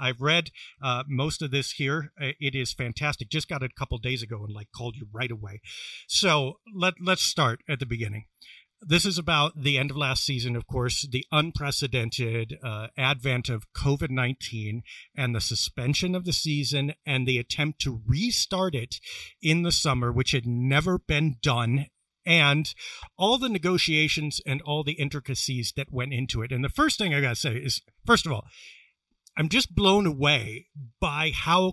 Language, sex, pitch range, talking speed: English, male, 130-170 Hz, 180 wpm